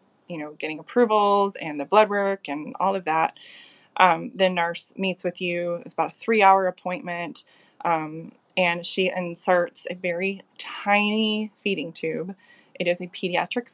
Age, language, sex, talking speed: 20-39, English, female, 155 wpm